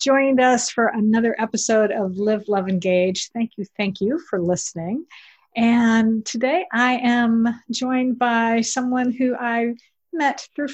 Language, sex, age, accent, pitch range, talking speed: English, female, 50-69, American, 205-255 Hz, 145 wpm